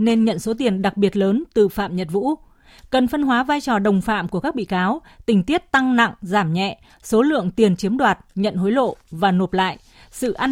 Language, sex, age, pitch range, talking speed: Vietnamese, female, 20-39, 200-245 Hz, 235 wpm